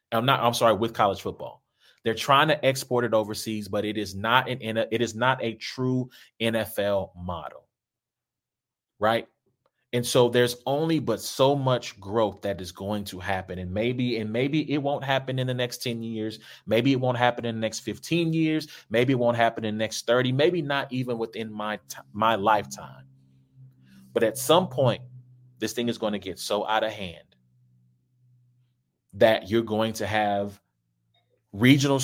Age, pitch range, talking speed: 30-49, 100-125 Hz, 180 wpm